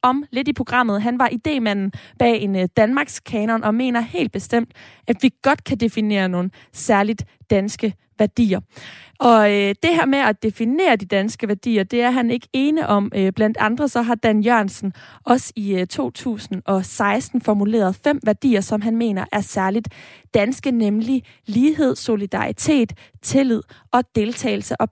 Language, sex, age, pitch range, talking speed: Danish, female, 20-39, 215-265 Hz, 150 wpm